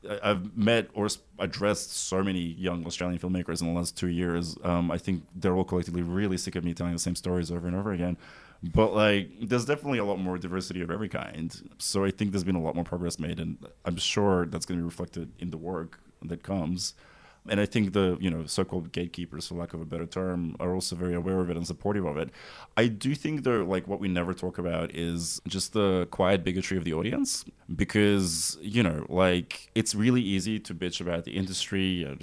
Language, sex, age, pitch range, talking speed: English, male, 20-39, 85-100 Hz, 225 wpm